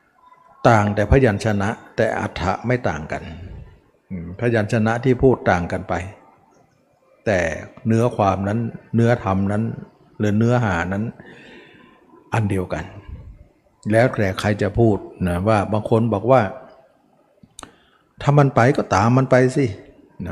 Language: Thai